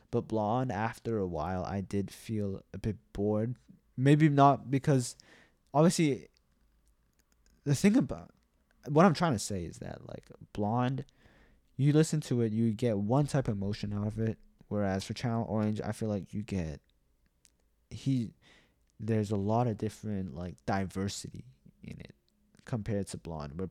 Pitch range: 95-120 Hz